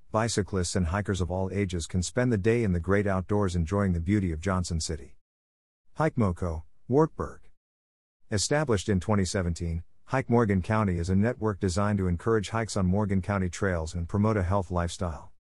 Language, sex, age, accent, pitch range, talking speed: English, male, 50-69, American, 85-115 Hz, 175 wpm